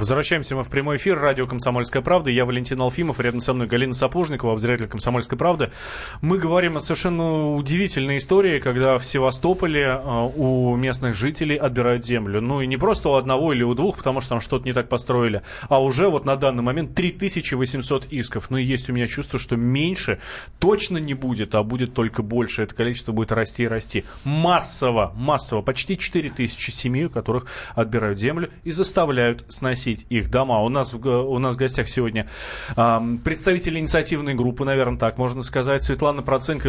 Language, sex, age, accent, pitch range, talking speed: Russian, male, 20-39, native, 120-150 Hz, 180 wpm